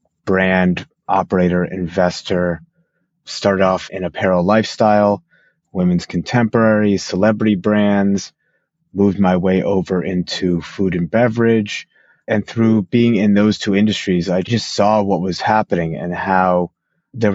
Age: 30-49